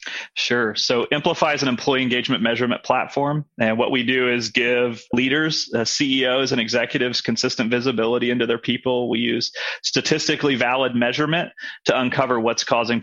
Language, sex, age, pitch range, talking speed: English, male, 30-49, 115-145 Hz, 155 wpm